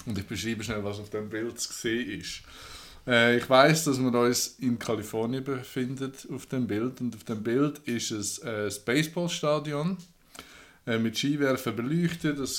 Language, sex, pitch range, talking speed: German, male, 110-135 Hz, 175 wpm